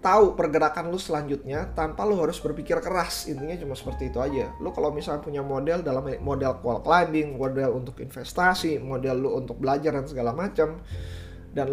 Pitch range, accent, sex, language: 125-165 Hz, native, male, Indonesian